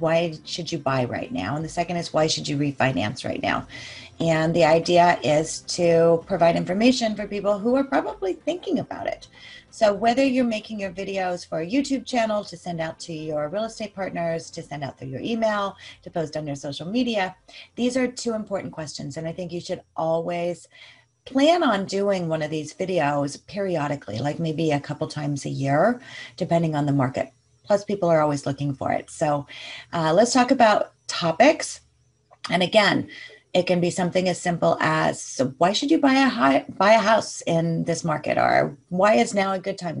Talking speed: 200 wpm